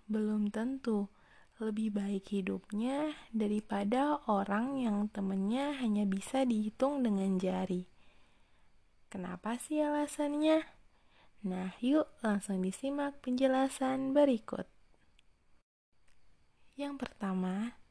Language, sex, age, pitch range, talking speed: Indonesian, female, 20-39, 200-245 Hz, 85 wpm